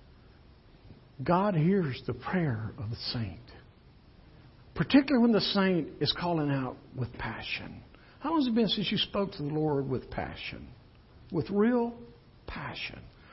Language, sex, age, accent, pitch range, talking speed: English, male, 60-79, American, 120-195 Hz, 145 wpm